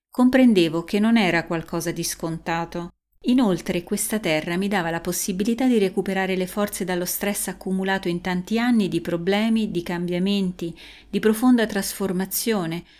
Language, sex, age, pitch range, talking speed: Italian, female, 30-49, 175-215 Hz, 145 wpm